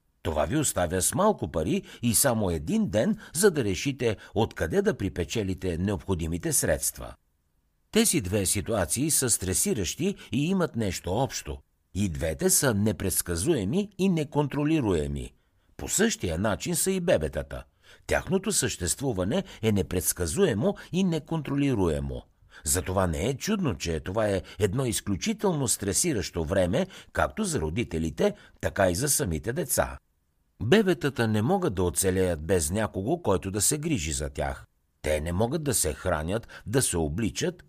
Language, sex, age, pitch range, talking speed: Bulgarian, male, 60-79, 85-135 Hz, 135 wpm